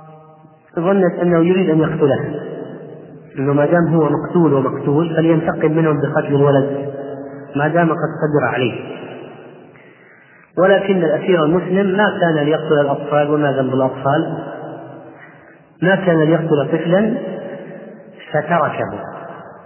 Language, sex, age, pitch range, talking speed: Arabic, male, 40-59, 150-180 Hz, 105 wpm